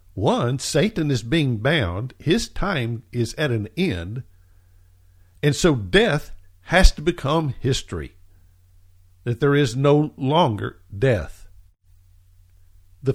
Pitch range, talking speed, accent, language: 90-120 Hz, 115 wpm, American, English